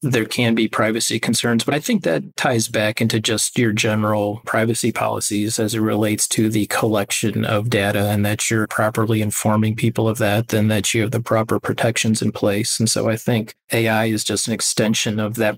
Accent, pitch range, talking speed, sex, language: American, 105-115 Hz, 205 wpm, male, English